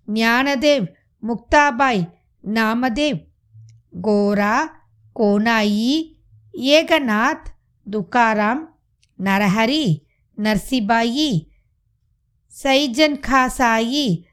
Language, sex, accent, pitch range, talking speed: Tamil, female, native, 185-260 Hz, 40 wpm